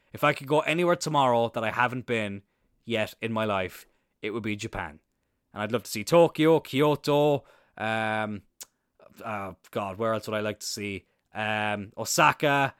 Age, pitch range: 20-39, 105-135 Hz